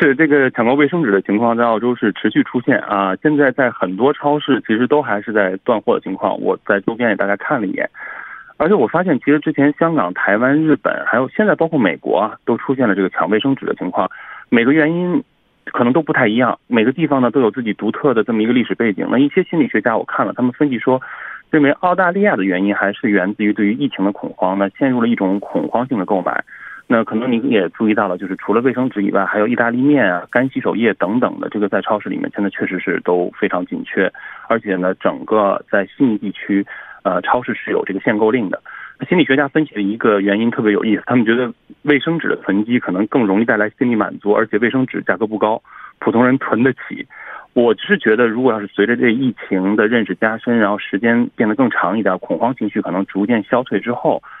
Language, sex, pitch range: Korean, male, 100-140 Hz